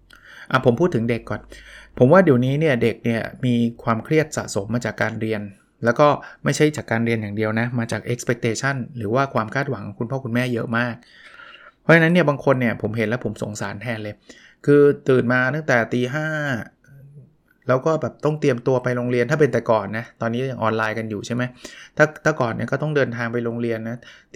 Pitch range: 120-150 Hz